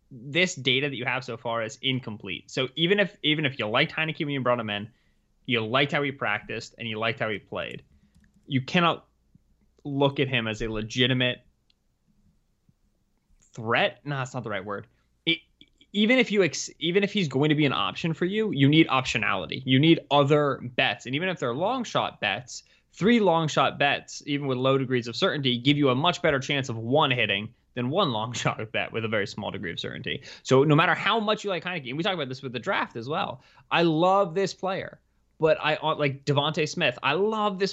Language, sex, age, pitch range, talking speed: English, male, 20-39, 125-165 Hz, 215 wpm